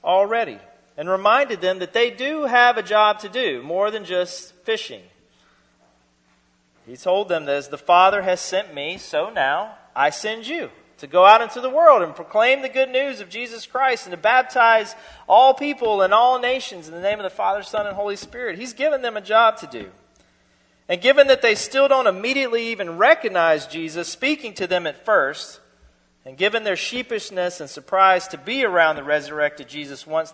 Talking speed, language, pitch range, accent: 195 wpm, English, 160-230 Hz, American